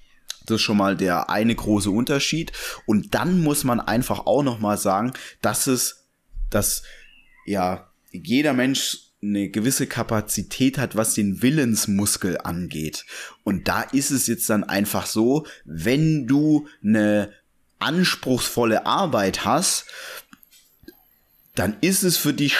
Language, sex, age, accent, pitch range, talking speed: German, male, 30-49, German, 110-140 Hz, 130 wpm